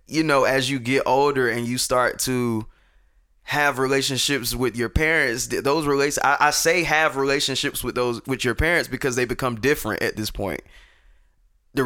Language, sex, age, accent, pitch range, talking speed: English, male, 20-39, American, 125-155 Hz, 175 wpm